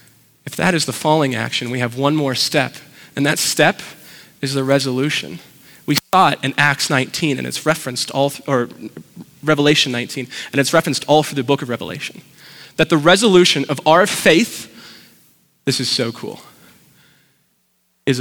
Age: 20-39